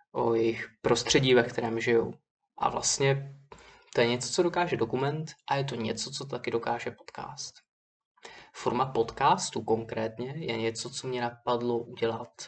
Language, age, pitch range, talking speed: Czech, 20-39, 115-130 Hz, 150 wpm